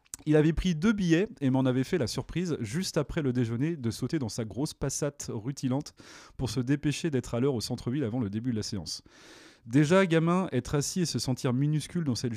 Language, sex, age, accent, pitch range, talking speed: French, male, 30-49, French, 125-165 Hz, 225 wpm